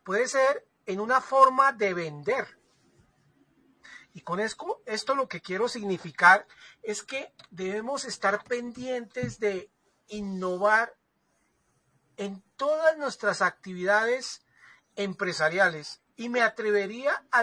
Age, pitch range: 40-59, 180-260 Hz